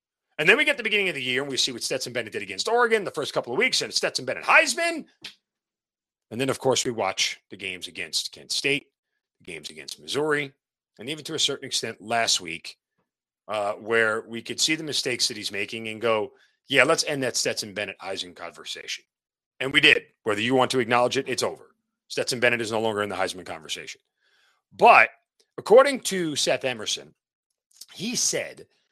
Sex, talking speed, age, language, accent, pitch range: male, 195 wpm, 40-59, English, American, 130-210 Hz